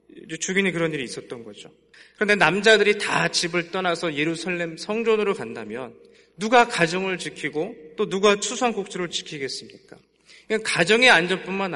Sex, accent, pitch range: male, native, 170-225 Hz